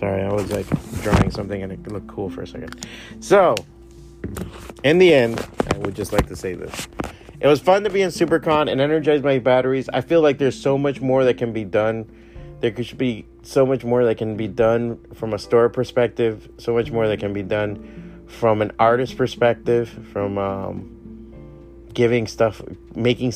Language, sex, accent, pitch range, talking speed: English, male, American, 105-125 Hz, 195 wpm